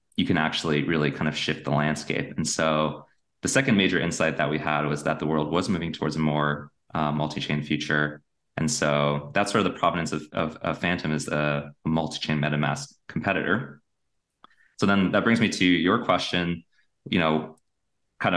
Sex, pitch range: male, 75-95 Hz